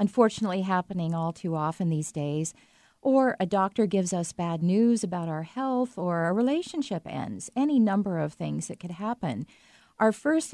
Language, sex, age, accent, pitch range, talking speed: English, female, 40-59, American, 170-215 Hz, 170 wpm